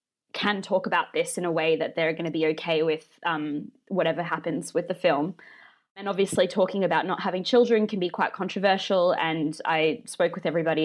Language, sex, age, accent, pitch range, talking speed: English, female, 20-39, Australian, 170-210 Hz, 200 wpm